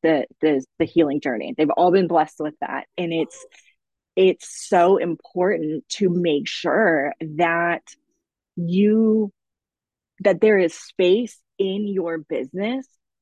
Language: English